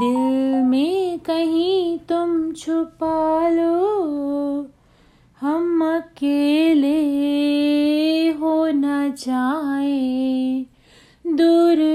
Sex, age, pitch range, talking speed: female, 30-49, 260-330 Hz, 60 wpm